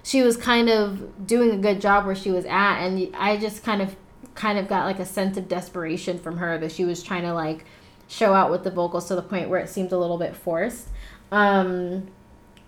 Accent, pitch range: American, 185-215 Hz